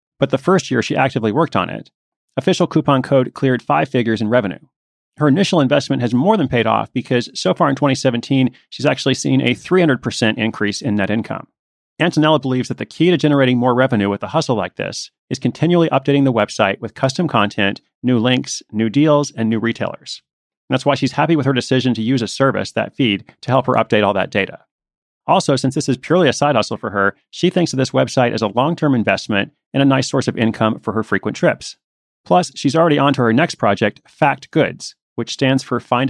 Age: 30-49